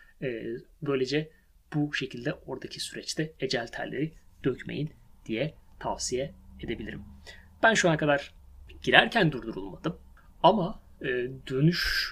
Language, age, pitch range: Turkish, 30-49, 130-175 Hz